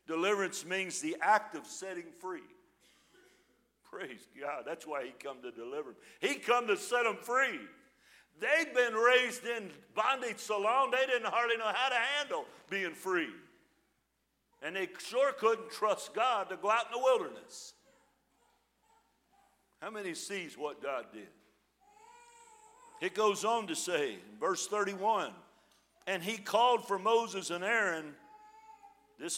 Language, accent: English, American